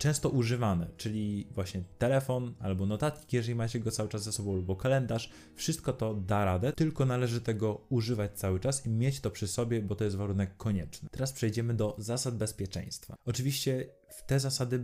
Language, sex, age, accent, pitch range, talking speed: Polish, male, 20-39, native, 100-125 Hz, 180 wpm